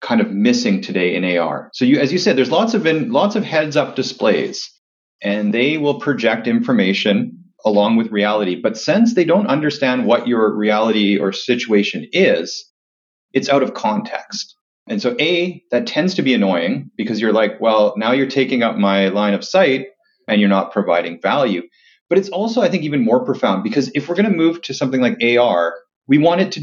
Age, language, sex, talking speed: 30-49, English, male, 200 wpm